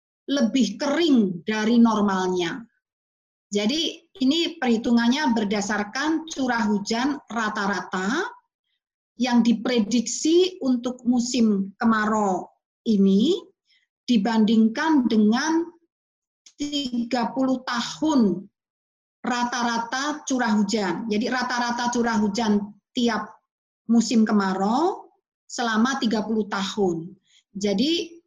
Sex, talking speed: female, 75 wpm